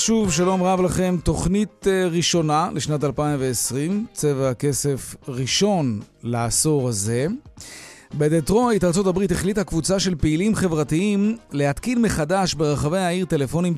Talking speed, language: 110 wpm, Hebrew